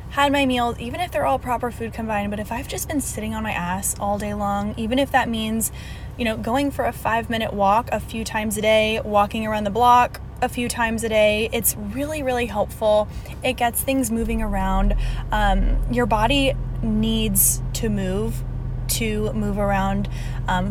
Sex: female